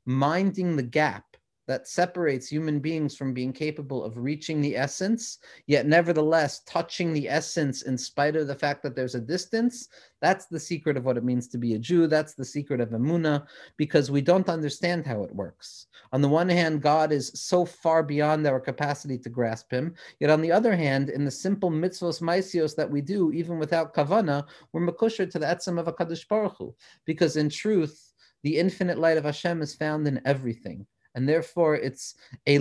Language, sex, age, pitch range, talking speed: English, male, 40-59, 130-165 Hz, 195 wpm